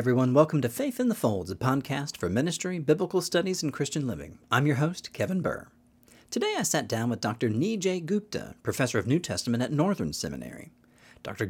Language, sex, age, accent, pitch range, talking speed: English, male, 40-59, American, 115-165 Hz, 195 wpm